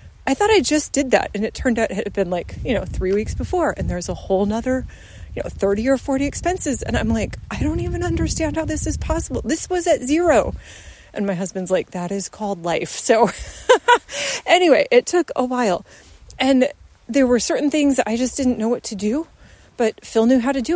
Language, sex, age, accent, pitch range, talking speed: English, female, 30-49, American, 200-265 Hz, 225 wpm